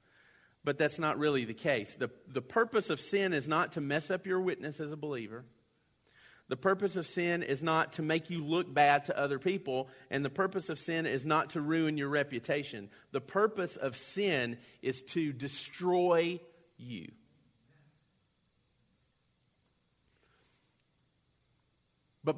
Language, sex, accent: English, male, American